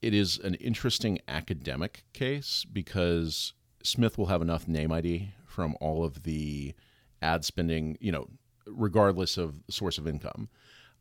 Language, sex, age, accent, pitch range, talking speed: English, male, 40-59, American, 80-105 Hz, 140 wpm